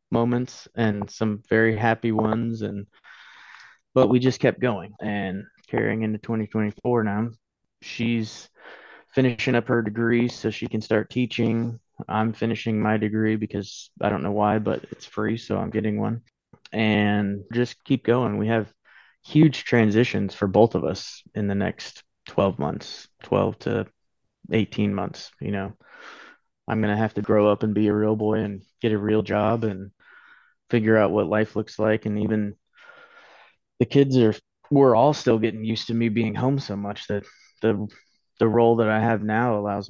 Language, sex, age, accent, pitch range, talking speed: English, male, 20-39, American, 105-115 Hz, 175 wpm